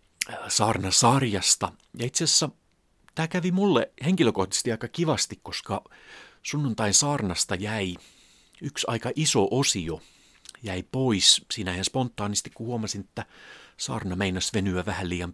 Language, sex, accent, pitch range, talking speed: Finnish, male, native, 95-120 Hz, 120 wpm